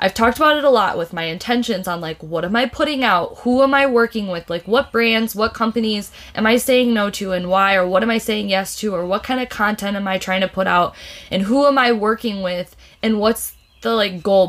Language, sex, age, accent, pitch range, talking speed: English, female, 20-39, American, 185-235 Hz, 255 wpm